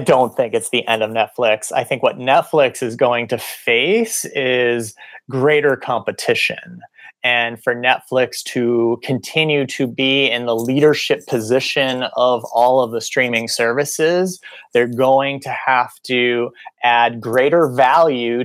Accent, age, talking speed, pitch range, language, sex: American, 30-49, 145 wpm, 120-160 Hz, Portuguese, male